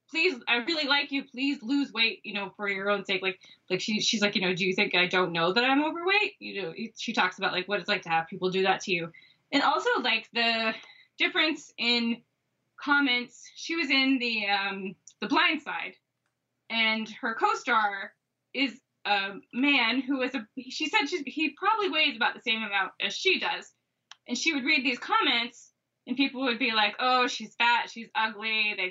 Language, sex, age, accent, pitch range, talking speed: English, female, 20-39, American, 205-280 Hz, 210 wpm